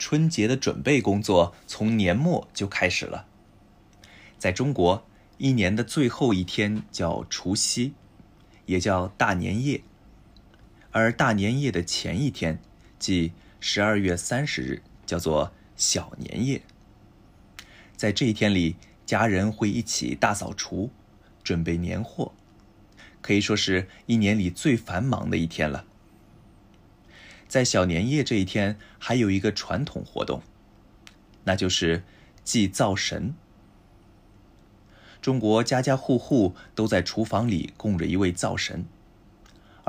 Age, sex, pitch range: 20-39, male, 95-110 Hz